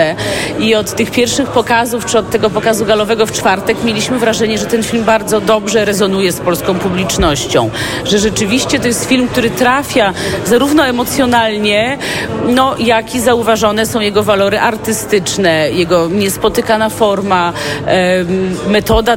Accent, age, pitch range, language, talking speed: native, 40-59, 195-250 Hz, Polish, 140 wpm